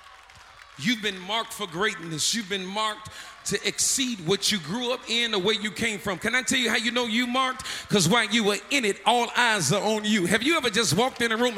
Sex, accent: male, American